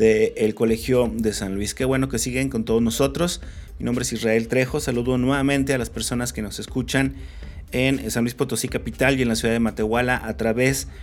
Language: Spanish